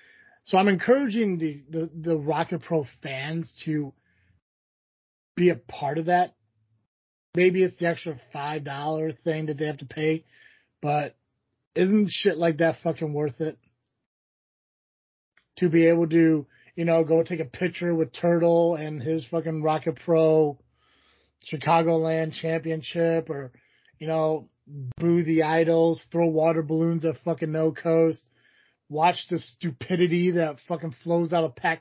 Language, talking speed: English, 140 wpm